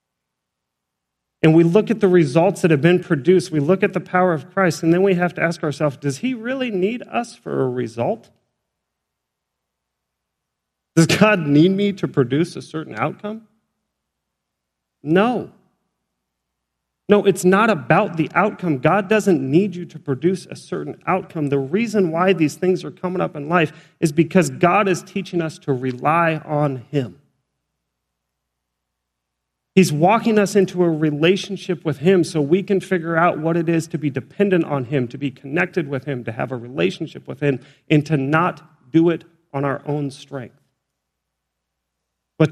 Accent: American